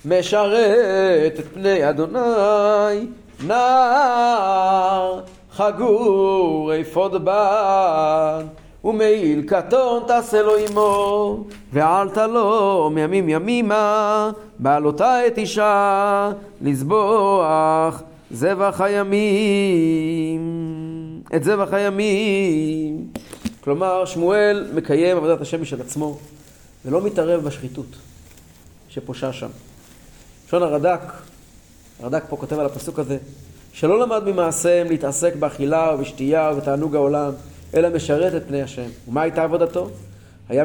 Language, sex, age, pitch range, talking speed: Hebrew, male, 30-49, 140-195 Hz, 95 wpm